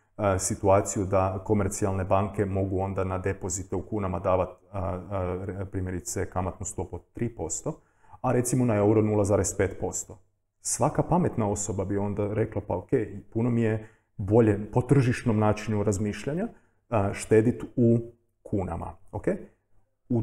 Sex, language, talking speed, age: male, Croatian, 125 wpm, 30-49